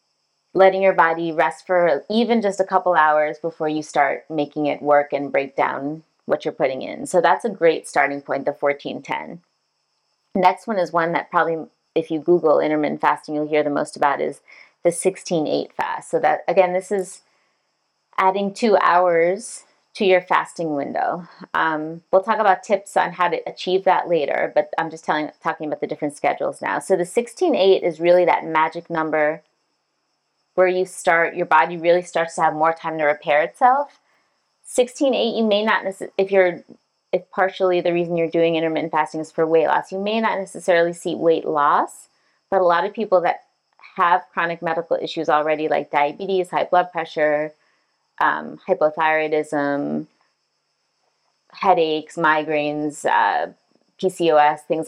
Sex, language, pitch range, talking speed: female, English, 150-185 Hz, 175 wpm